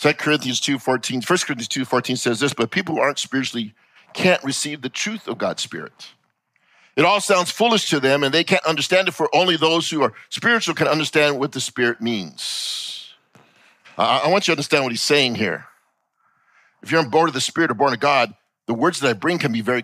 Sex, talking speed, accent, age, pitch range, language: male, 220 wpm, American, 50-69, 125-175 Hz, English